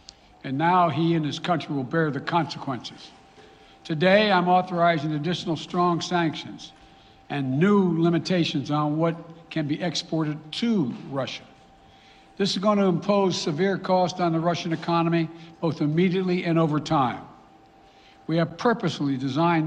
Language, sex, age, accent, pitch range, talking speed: English, male, 60-79, American, 145-175 Hz, 140 wpm